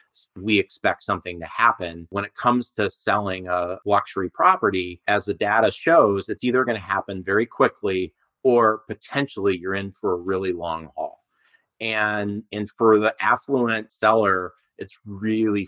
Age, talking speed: 30-49, 155 wpm